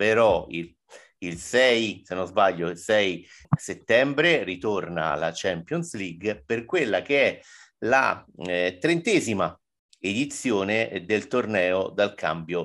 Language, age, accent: Italian, 50-69, native